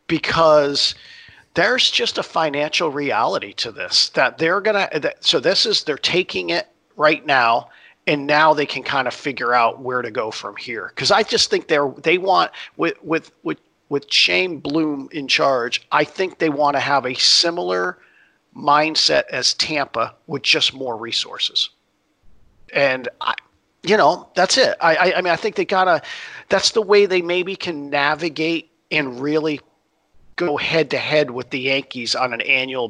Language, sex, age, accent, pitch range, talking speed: English, male, 50-69, American, 135-175 Hz, 175 wpm